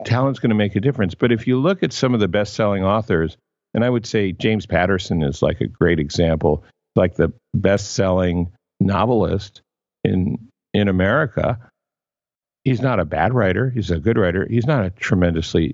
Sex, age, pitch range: male, 50-69, 90-120 Hz